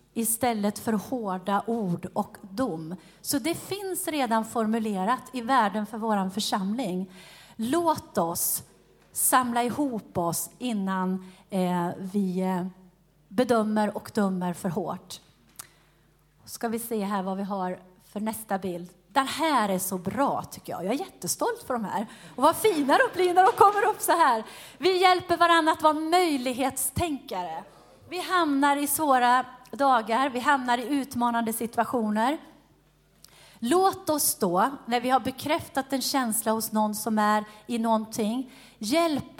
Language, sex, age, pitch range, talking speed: Swedish, female, 30-49, 200-280 Hz, 145 wpm